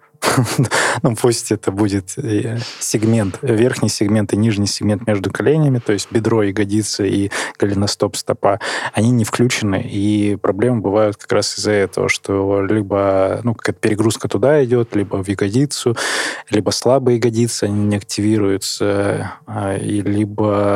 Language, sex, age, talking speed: Russian, male, 20-39, 135 wpm